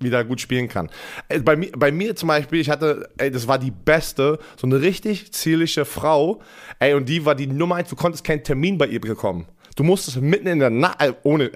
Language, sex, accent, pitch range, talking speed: German, male, German, 130-165 Hz, 230 wpm